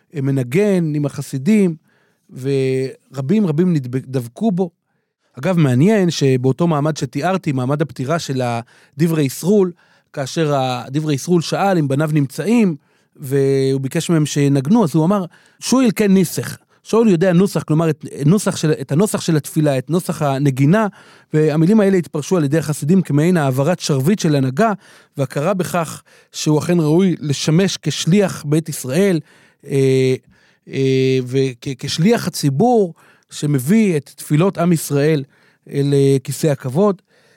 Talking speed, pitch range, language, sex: 125 wpm, 140-185 Hz, Hebrew, male